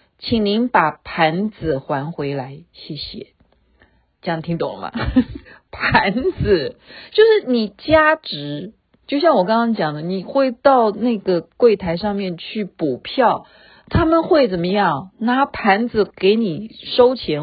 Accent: native